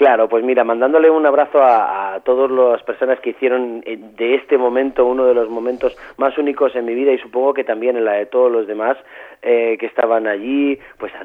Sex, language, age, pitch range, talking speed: male, Spanish, 30-49, 115-140 Hz, 220 wpm